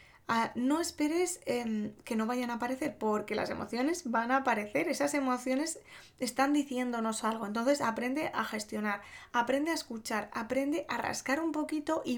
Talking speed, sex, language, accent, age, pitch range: 160 wpm, female, Spanish, Spanish, 20-39, 225-285 Hz